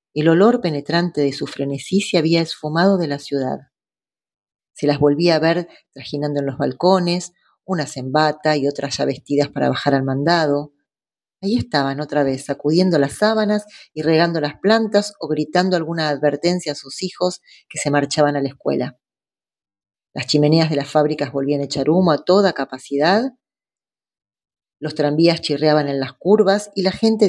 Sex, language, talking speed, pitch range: female, Spanish, 170 wpm, 145-175 Hz